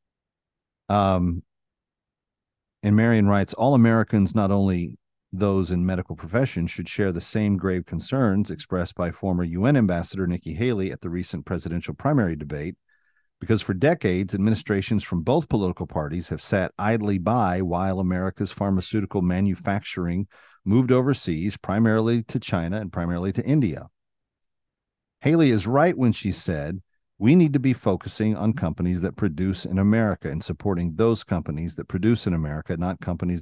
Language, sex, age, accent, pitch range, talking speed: English, male, 40-59, American, 90-115 Hz, 150 wpm